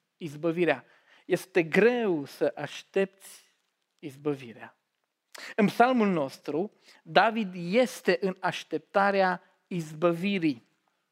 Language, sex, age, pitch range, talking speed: Romanian, male, 40-59, 160-200 Hz, 75 wpm